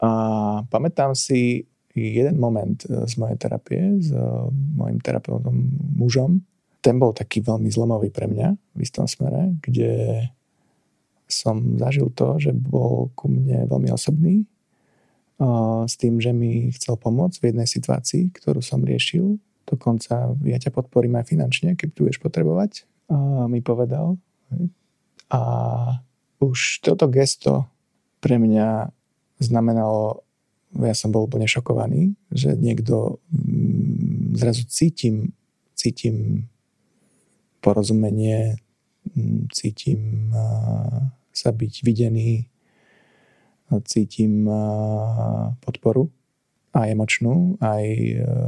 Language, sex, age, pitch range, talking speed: Slovak, male, 20-39, 110-135 Hz, 105 wpm